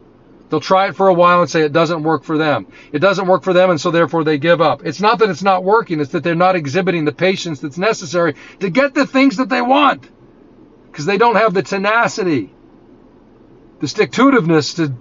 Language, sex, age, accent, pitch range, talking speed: English, male, 50-69, American, 170-215 Hz, 225 wpm